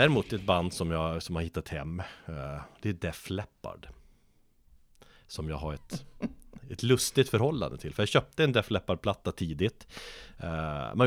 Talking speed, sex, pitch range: 165 wpm, male, 80-110 Hz